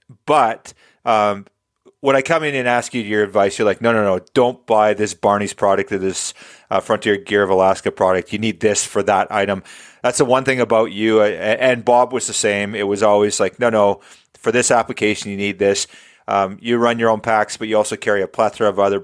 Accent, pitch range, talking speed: American, 100-120 Hz, 225 wpm